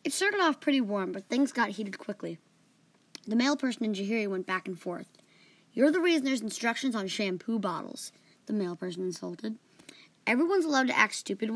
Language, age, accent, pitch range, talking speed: English, 20-39, American, 190-260 Hz, 185 wpm